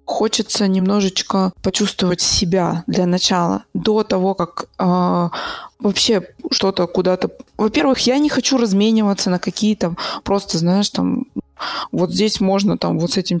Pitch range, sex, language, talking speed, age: 185-220 Hz, female, Russian, 135 wpm, 20-39